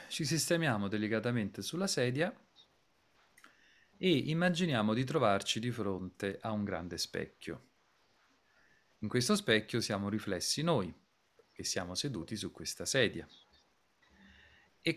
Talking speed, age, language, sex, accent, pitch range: 110 wpm, 40-59, Italian, male, native, 90-120 Hz